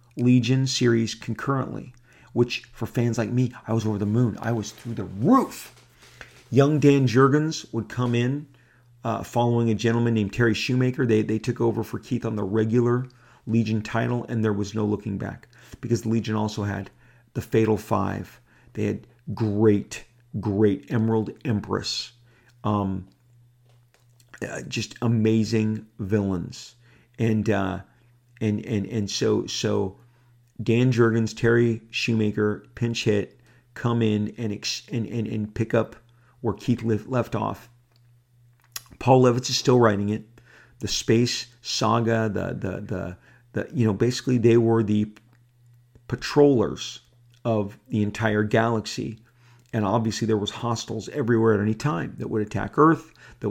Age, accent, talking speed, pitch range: 40-59, American, 145 wpm, 110-120 Hz